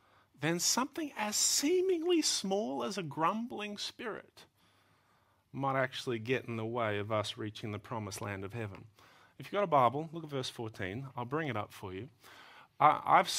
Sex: male